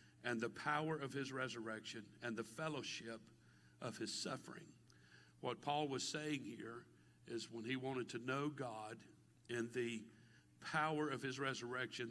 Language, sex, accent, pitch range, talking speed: English, male, American, 105-130 Hz, 150 wpm